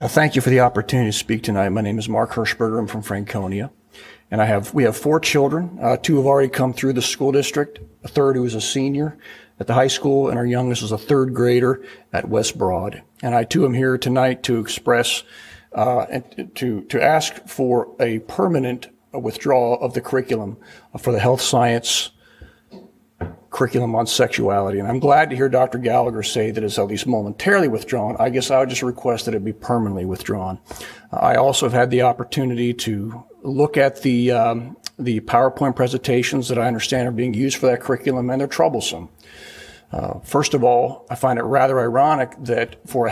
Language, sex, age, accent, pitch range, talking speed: English, male, 40-59, American, 115-135 Hz, 200 wpm